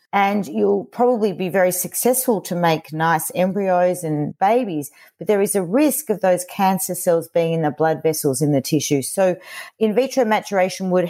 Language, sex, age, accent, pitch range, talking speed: English, female, 40-59, Australian, 160-205 Hz, 185 wpm